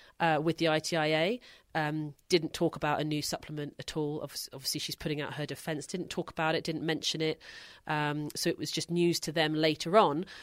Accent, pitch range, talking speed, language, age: British, 145-170 Hz, 205 wpm, English, 30-49